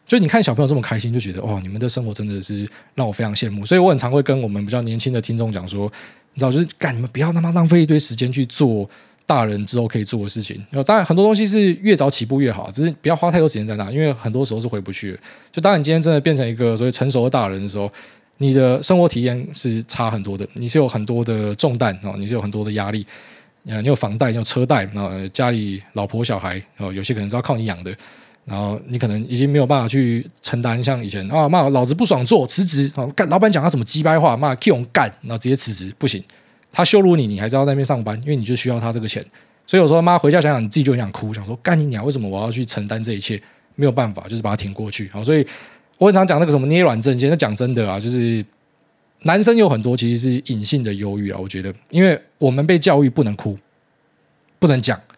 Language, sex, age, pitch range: Chinese, male, 20-39, 105-145 Hz